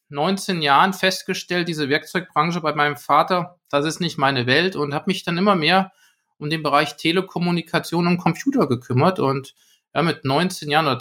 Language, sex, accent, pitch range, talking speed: German, male, German, 150-190 Hz, 175 wpm